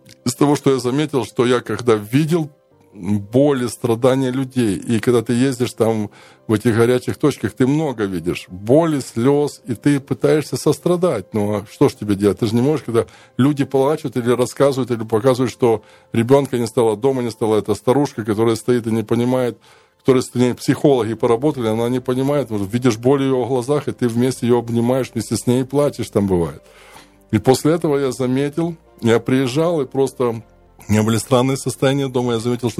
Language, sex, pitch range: Ukrainian, male, 110-130 Hz